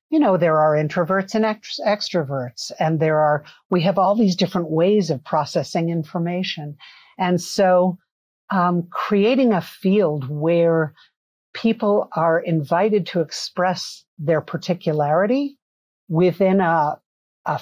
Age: 50-69